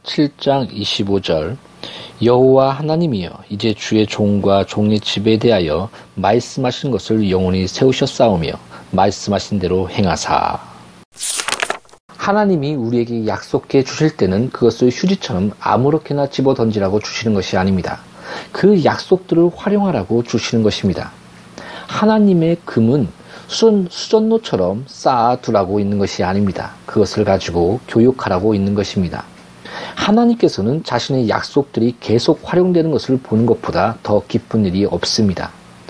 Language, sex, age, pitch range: Korean, male, 40-59, 105-150 Hz